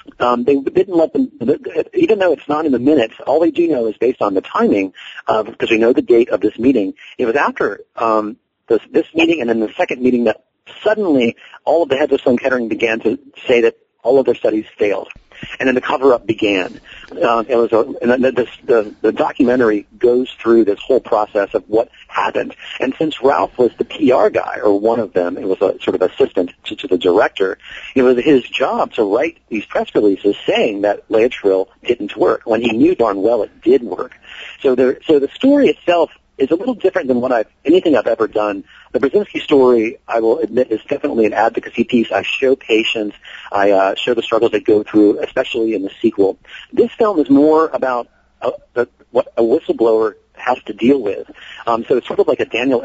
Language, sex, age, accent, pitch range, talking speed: English, male, 40-59, American, 110-180 Hz, 215 wpm